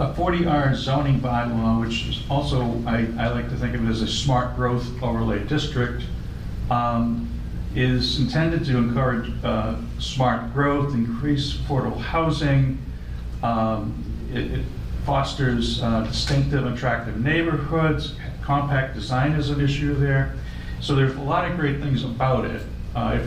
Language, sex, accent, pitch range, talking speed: English, male, American, 115-140 Hz, 145 wpm